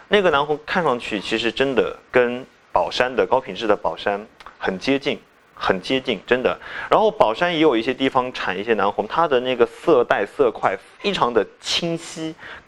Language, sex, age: Chinese, male, 20-39